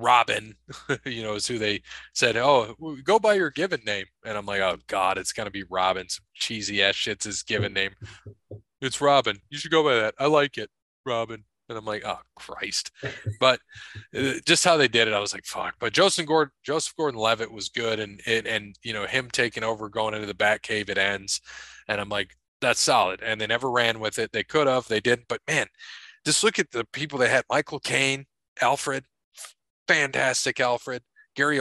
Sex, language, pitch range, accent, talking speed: male, English, 105-135 Hz, American, 200 wpm